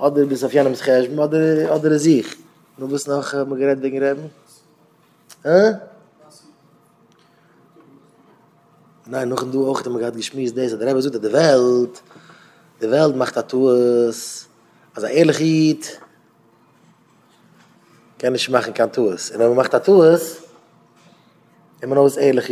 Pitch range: 130-165 Hz